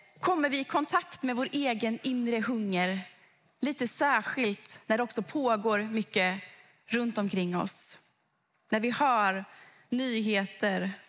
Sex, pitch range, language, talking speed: female, 195-265 Hz, Swedish, 125 wpm